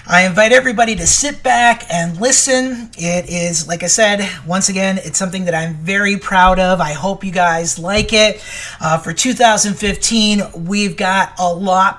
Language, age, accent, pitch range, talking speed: English, 40-59, American, 180-225 Hz, 175 wpm